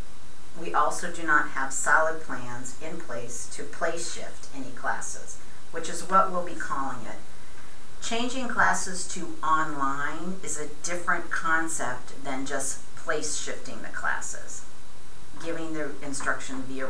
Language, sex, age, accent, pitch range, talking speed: English, female, 50-69, American, 150-175 Hz, 130 wpm